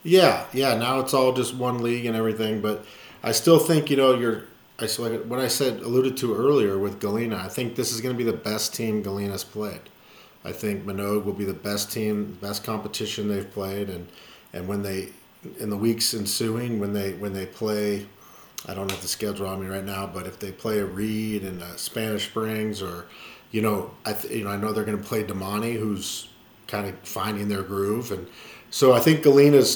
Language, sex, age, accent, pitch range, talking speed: English, male, 40-59, American, 100-115 Hz, 220 wpm